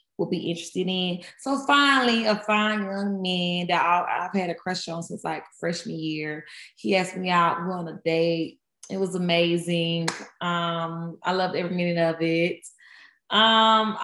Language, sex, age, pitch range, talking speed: English, female, 20-39, 165-215 Hz, 165 wpm